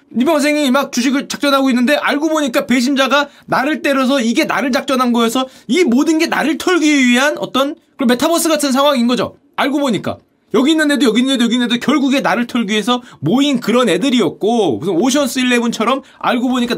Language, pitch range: Korean, 185-260 Hz